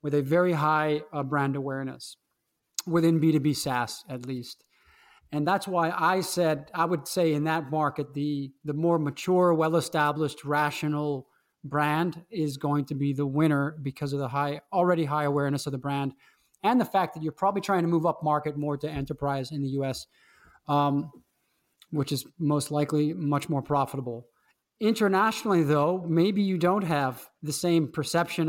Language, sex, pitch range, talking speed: English, male, 145-175 Hz, 170 wpm